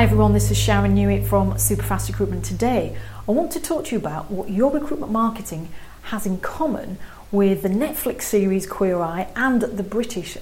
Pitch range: 185-240 Hz